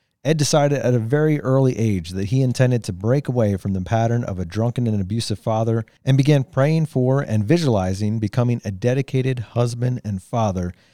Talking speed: 185 wpm